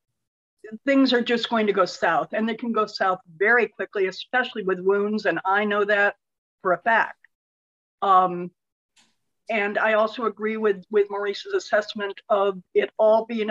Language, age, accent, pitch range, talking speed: English, 50-69, American, 195-235 Hz, 165 wpm